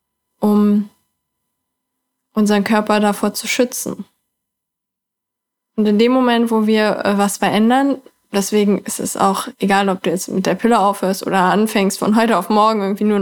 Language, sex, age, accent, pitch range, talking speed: German, female, 20-39, German, 210-240 Hz, 155 wpm